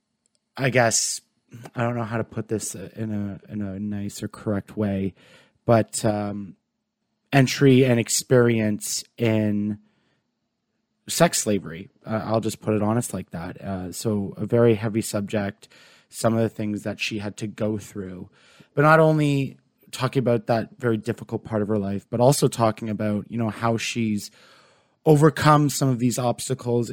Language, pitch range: English, 105-130 Hz